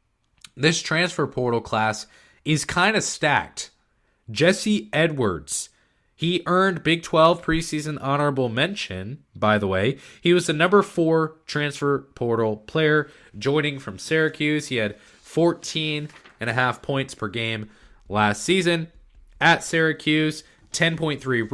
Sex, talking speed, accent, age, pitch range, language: male, 115 wpm, American, 20-39, 110-160 Hz, English